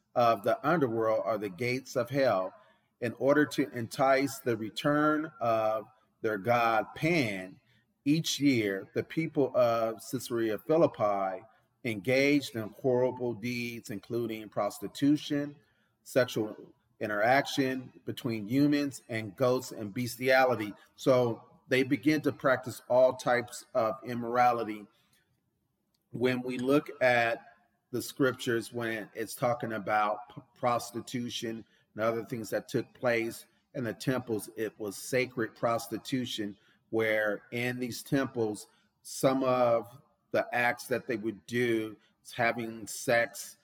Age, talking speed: 40-59, 120 wpm